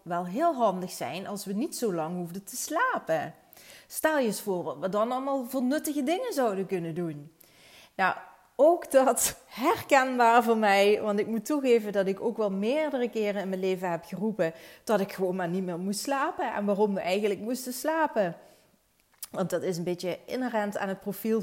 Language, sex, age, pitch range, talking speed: Dutch, female, 30-49, 180-225 Hz, 195 wpm